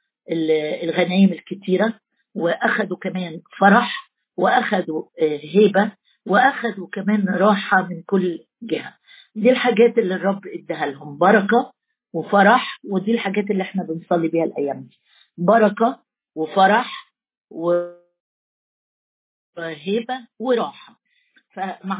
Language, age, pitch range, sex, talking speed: Arabic, 50-69, 185-230 Hz, female, 95 wpm